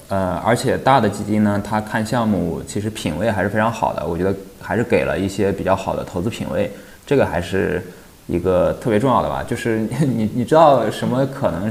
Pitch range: 100-120 Hz